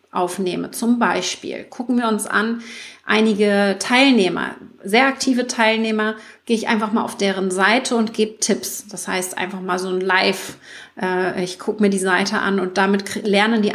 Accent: German